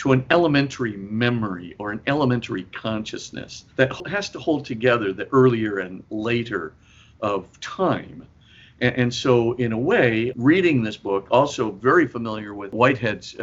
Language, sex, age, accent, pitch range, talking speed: English, male, 50-69, American, 105-125 Hz, 145 wpm